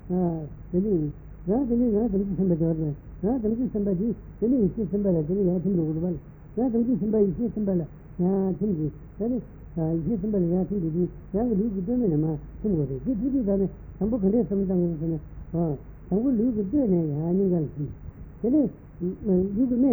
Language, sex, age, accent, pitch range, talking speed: Italian, female, 60-79, Indian, 155-210 Hz, 70 wpm